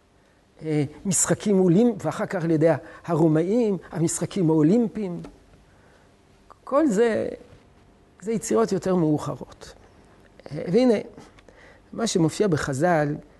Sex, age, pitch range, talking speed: male, 60-79, 140-220 Hz, 85 wpm